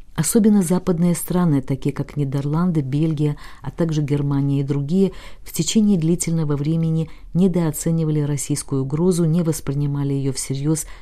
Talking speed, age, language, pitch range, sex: 125 wpm, 50-69, Russian, 140-165 Hz, female